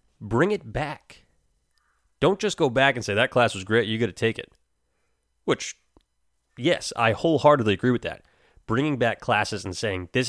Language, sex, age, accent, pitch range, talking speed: English, male, 30-49, American, 95-125 Hz, 180 wpm